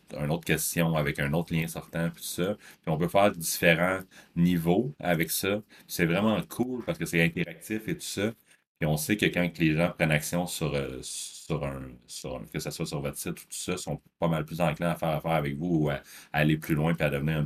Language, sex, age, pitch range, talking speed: French, male, 30-49, 75-85 Hz, 240 wpm